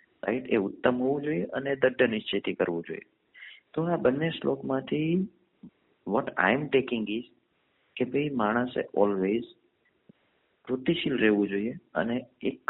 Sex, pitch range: male, 100-125 Hz